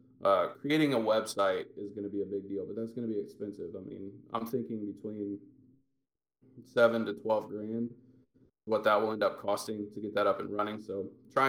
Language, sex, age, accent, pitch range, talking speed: English, male, 20-39, American, 100-130 Hz, 200 wpm